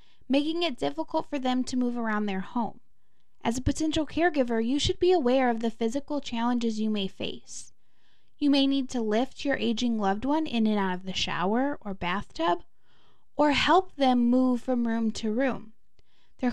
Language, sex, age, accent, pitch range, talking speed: English, female, 10-29, American, 225-290 Hz, 185 wpm